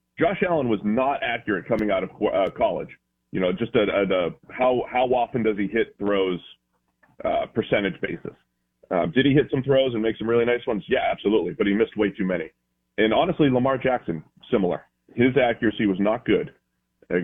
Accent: American